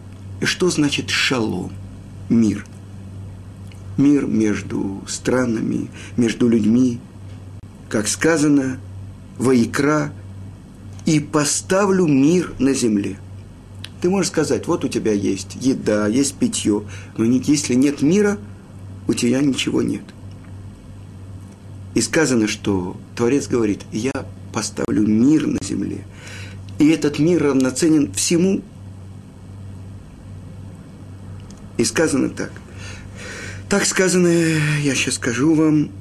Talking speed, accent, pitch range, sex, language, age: 100 wpm, native, 95-140 Hz, male, Russian, 50-69